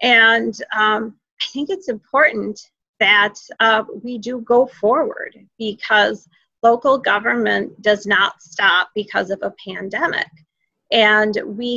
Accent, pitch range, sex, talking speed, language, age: American, 210-240 Hz, female, 120 wpm, English, 40-59